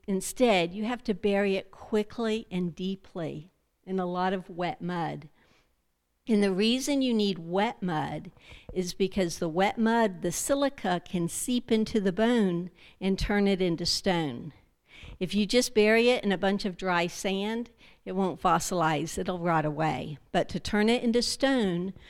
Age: 60-79